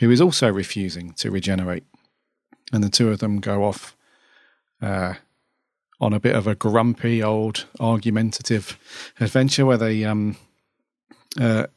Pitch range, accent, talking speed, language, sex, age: 105-120 Hz, British, 140 wpm, English, male, 40-59